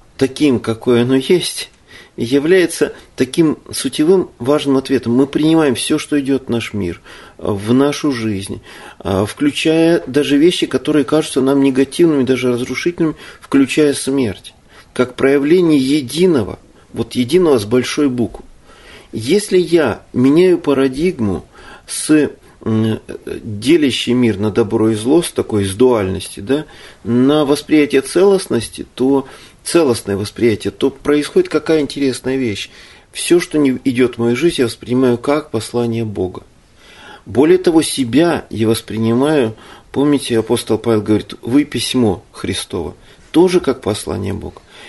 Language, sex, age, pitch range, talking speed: Russian, male, 40-59, 115-155 Hz, 125 wpm